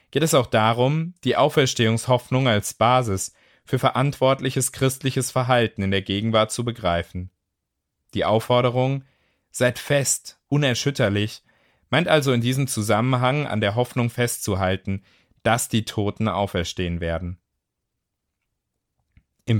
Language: German